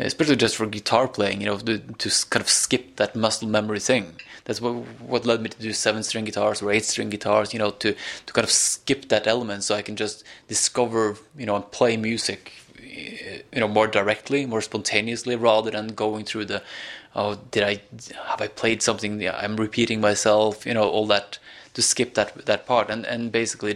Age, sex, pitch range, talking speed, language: 20-39, male, 105-115 Hz, 210 wpm, English